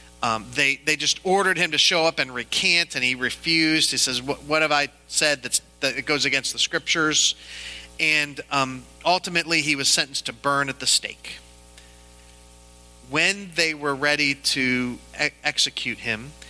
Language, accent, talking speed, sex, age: English, American, 165 wpm, male, 40-59